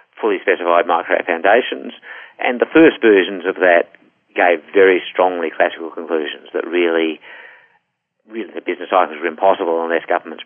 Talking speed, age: 130 wpm, 50-69